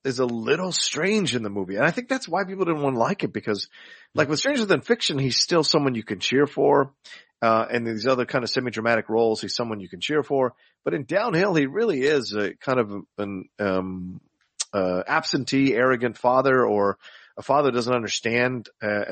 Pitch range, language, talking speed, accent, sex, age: 95-130 Hz, English, 205 wpm, American, male, 40-59